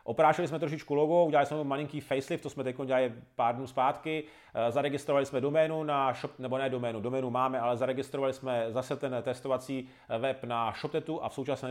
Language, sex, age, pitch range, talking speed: Czech, male, 30-49, 130-150 Hz, 190 wpm